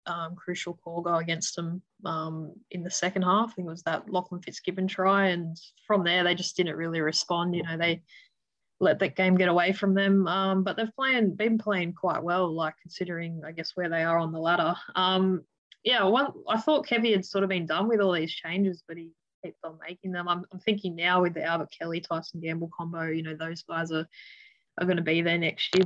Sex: female